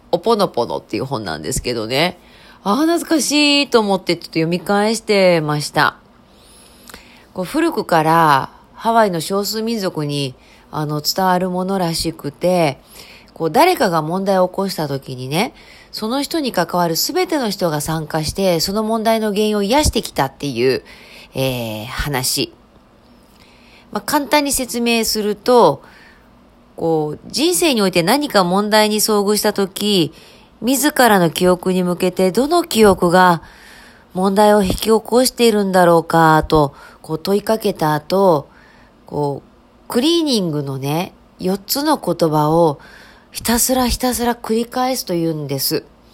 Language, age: Japanese, 40-59